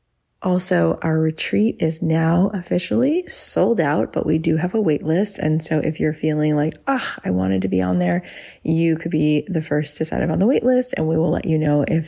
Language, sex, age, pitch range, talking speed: English, female, 30-49, 145-165 Hz, 235 wpm